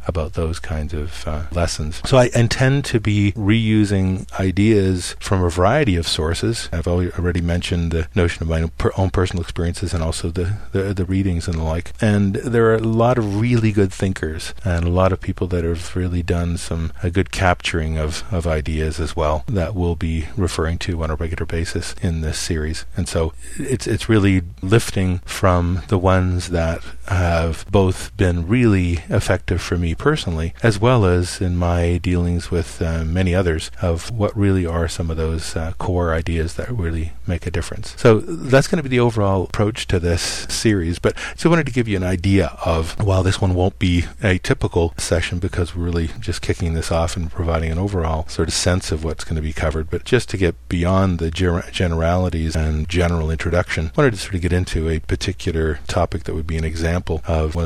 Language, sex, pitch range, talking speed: English, male, 80-100 Hz, 200 wpm